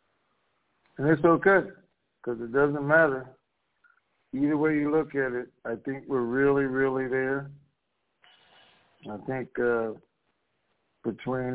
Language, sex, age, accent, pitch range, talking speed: English, male, 60-79, American, 120-140 Hz, 120 wpm